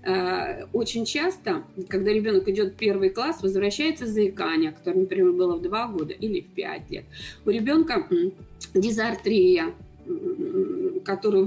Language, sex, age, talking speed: Russian, female, 20-39, 125 wpm